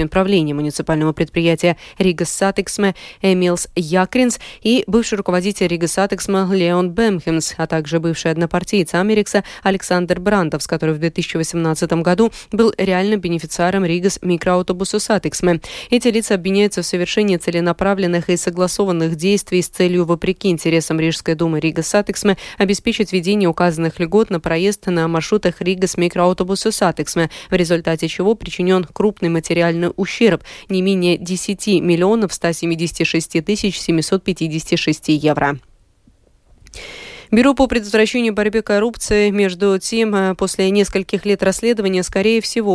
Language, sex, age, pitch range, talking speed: Russian, female, 20-39, 170-200 Hz, 120 wpm